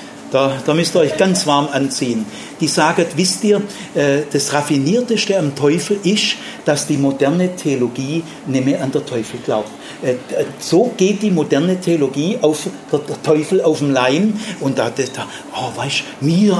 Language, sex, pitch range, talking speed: German, male, 145-200 Hz, 155 wpm